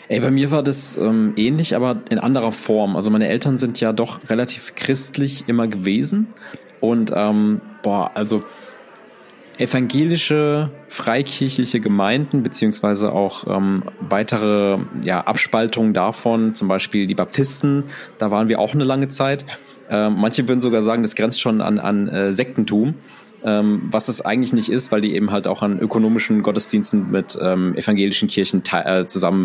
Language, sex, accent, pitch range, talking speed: German, male, German, 105-130 Hz, 155 wpm